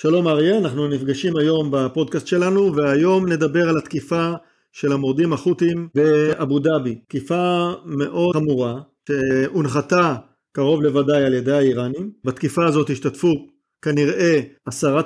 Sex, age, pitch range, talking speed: male, 50-69, 135-165 Hz, 120 wpm